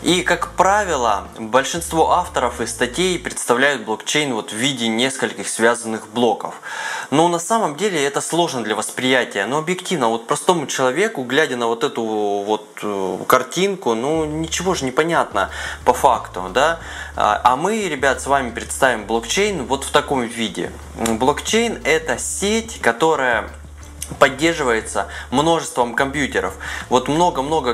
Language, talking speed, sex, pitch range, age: Russian, 135 wpm, male, 115-150 Hz, 20-39